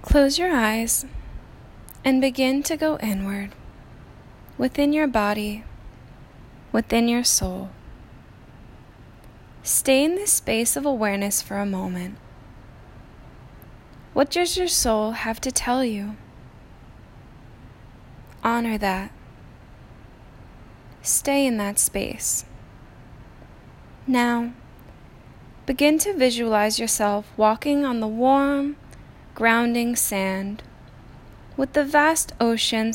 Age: 10-29